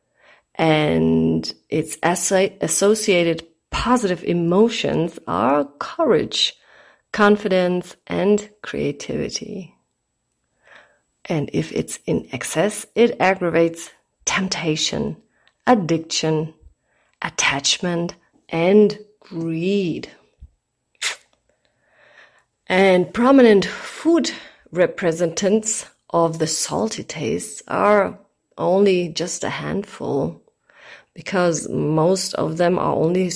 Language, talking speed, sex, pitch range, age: English, 75 wpm, female, 165-205 Hz, 30-49